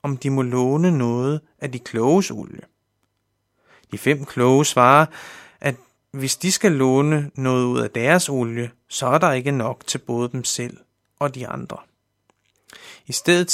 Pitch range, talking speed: 120-155 Hz, 165 wpm